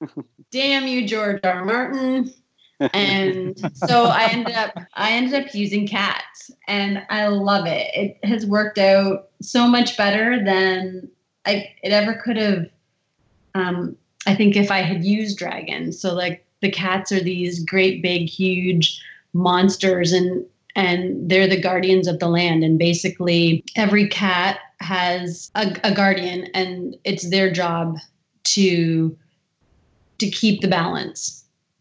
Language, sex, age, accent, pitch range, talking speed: English, female, 30-49, American, 175-200 Hz, 140 wpm